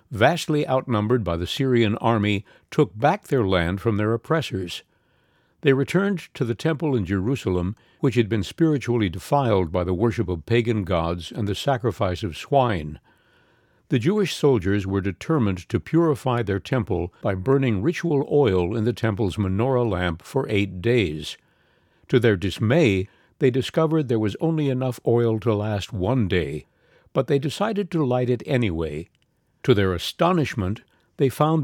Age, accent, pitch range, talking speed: 60-79, American, 100-140 Hz, 155 wpm